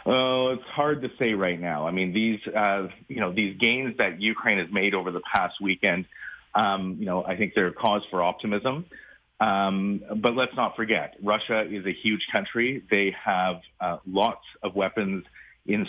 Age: 30-49